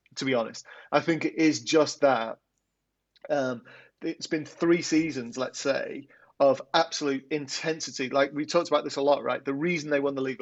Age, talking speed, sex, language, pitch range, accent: 30-49, 190 wpm, male, English, 130-150 Hz, British